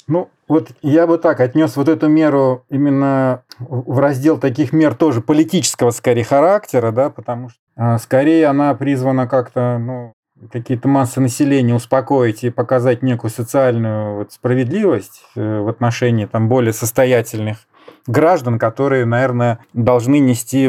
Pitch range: 120-150 Hz